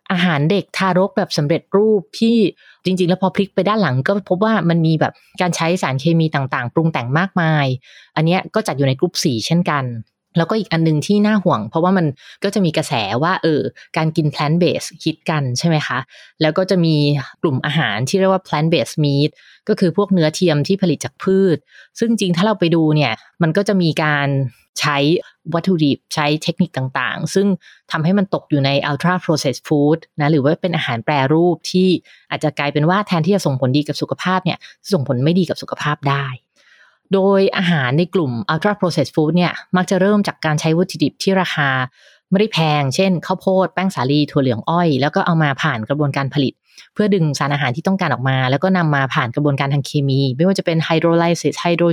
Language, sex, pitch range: English, female, 145-185 Hz